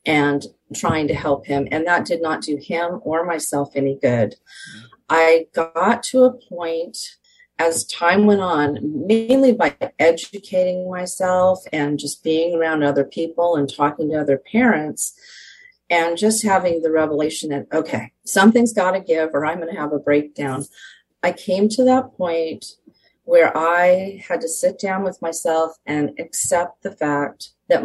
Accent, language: American, English